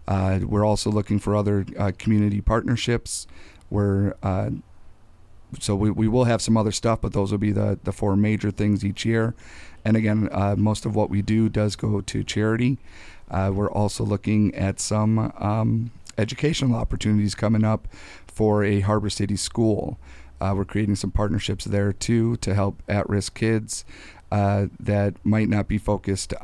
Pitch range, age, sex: 100-110 Hz, 40-59, male